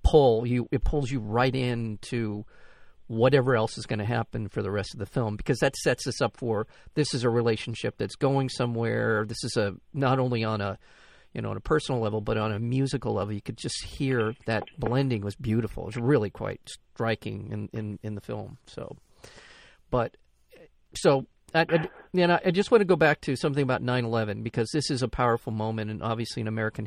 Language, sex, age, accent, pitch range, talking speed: English, male, 50-69, American, 110-135 Hz, 215 wpm